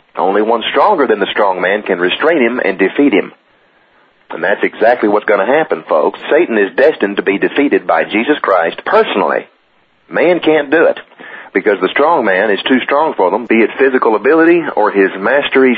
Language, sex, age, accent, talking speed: English, male, 40-59, American, 195 wpm